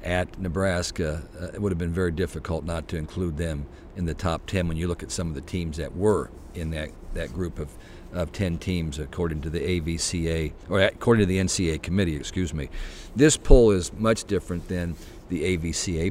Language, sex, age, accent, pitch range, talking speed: English, male, 50-69, American, 85-95 Hz, 205 wpm